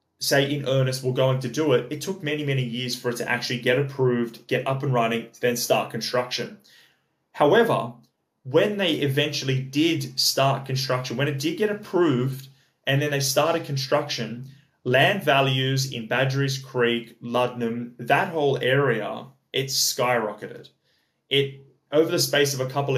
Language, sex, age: English, male, 20-39